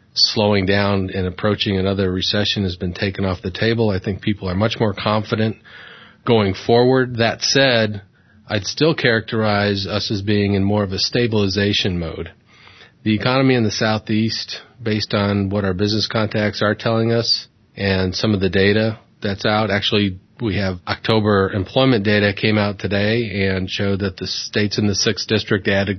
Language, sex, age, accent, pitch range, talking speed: English, male, 40-59, American, 100-115 Hz, 175 wpm